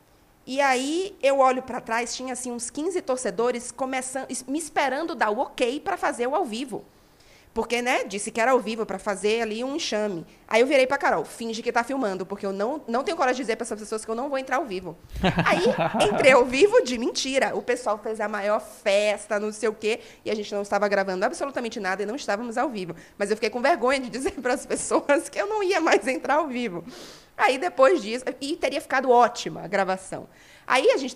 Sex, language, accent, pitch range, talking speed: female, Portuguese, Brazilian, 210-270 Hz, 230 wpm